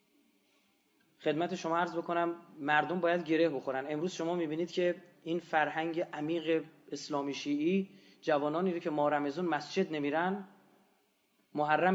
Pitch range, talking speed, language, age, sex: 150-185 Hz, 125 wpm, Persian, 30-49, male